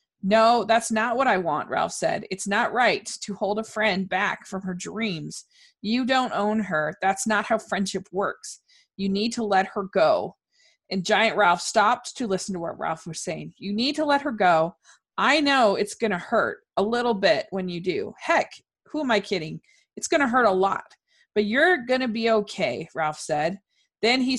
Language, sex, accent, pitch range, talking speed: English, female, American, 190-255 Hz, 205 wpm